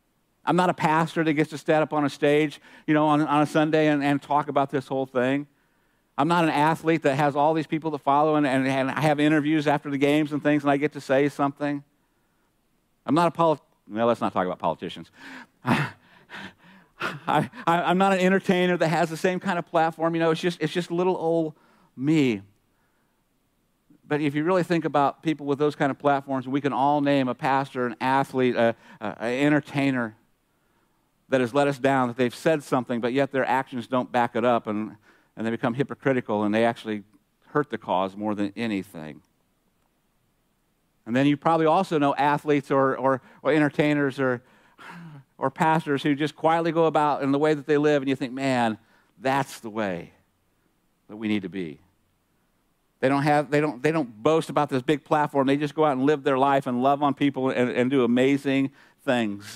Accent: American